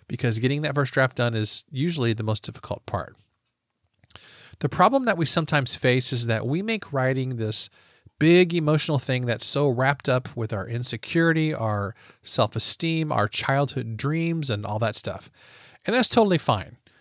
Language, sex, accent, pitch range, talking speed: English, male, American, 115-155 Hz, 165 wpm